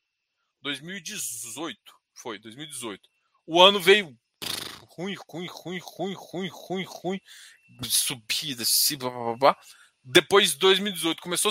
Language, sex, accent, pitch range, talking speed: Portuguese, male, Brazilian, 150-205 Hz, 100 wpm